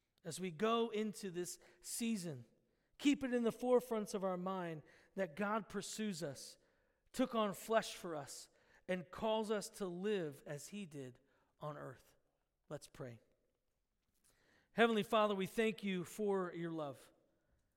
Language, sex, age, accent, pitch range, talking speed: Italian, male, 40-59, American, 160-210 Hz, 145 wpm